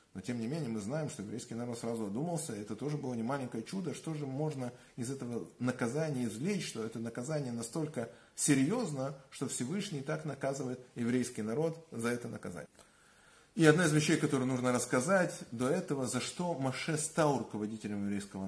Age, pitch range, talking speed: 30-49, 115-155 Hz, 170 wpm